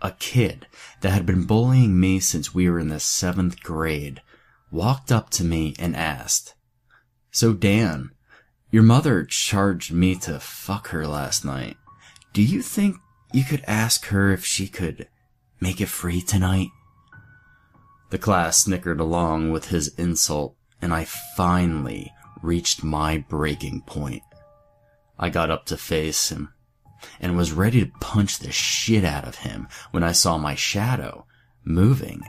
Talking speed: 150 wpm